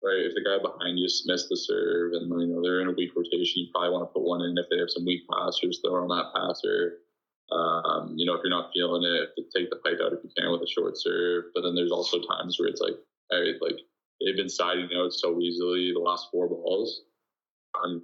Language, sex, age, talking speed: English, male, 20-39, 255 wpm